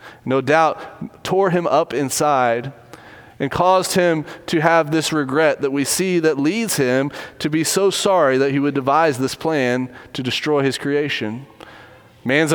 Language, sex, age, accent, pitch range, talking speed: English, male, 30-49, American, 145-195 Hz, 165 wpm